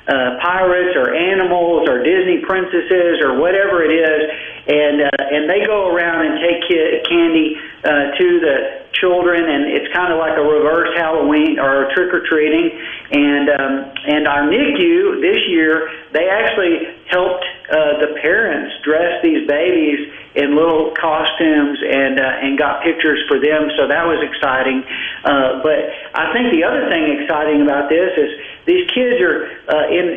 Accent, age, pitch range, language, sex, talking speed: American, 50-69, 145-180 Hz, English, male, 165 wpm